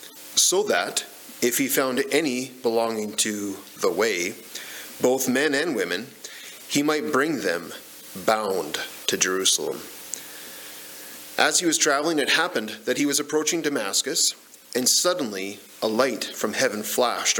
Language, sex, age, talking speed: English, male, 40-59, 135 wpm